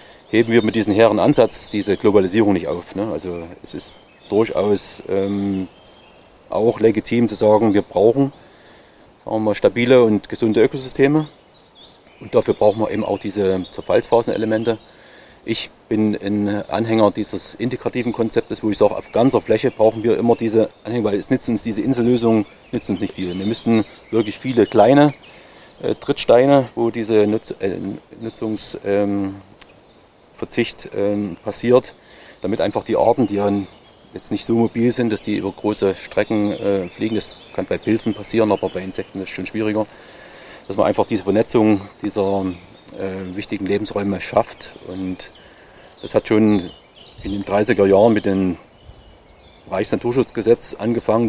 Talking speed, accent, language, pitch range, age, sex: 150 wpm, German, German, 100-115 Hz, 30-49, male